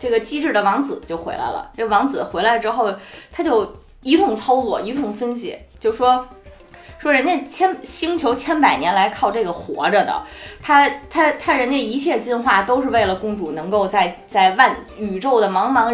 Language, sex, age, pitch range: Chinese, female, 20-39, 175-260 Hz